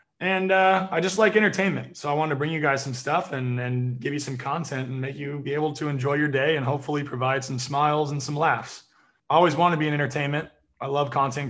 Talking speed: 250 wpm